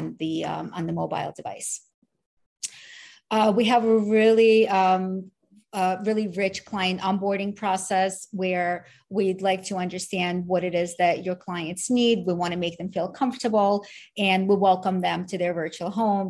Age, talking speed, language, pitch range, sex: 30-49, 165 wpm, English, 175-205 Hz, female